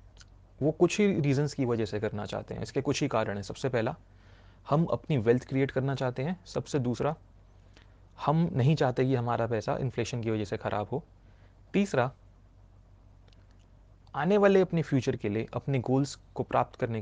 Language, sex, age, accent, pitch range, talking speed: Hindi, male, 30-49, native, 100-130 Hz, 175 wpm